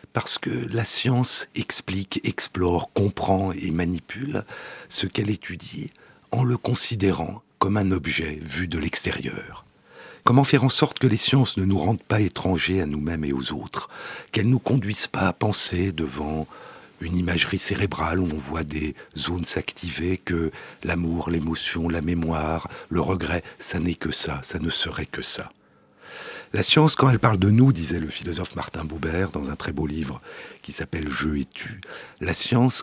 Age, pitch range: 60-79, 80-100 Hz